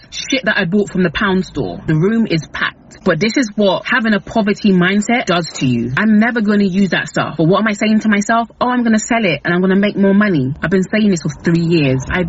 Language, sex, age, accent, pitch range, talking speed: English, female, 30-49, British, 150-200 Hz, 285 wpm